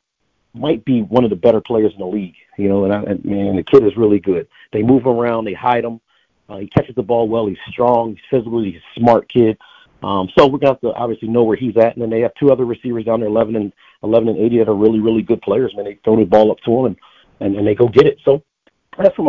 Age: 40-59